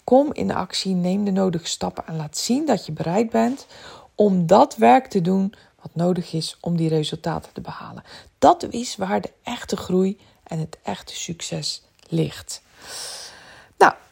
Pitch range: 175-230 Hz